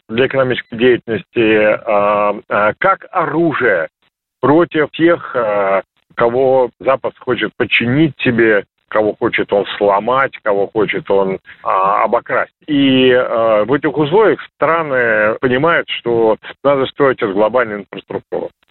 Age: 50-69